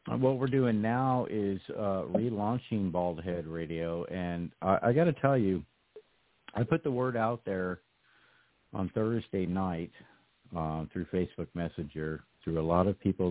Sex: male